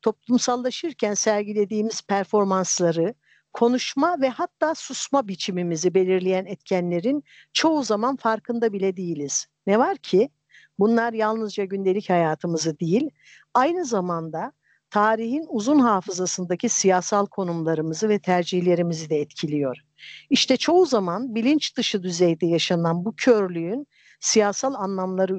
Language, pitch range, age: Turkish, 185-255 Hz, 60-79